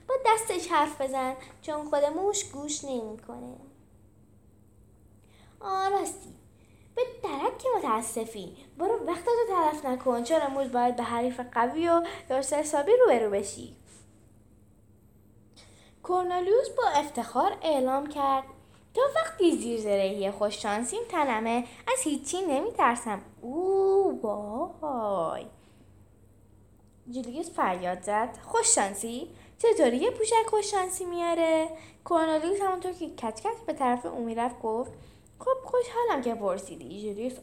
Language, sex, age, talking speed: Persian, female, 10-29, 110 wpm